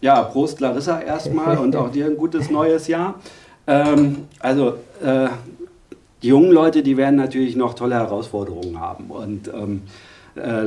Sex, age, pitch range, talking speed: male, 50-69, 115-135 Hz, 150 wpm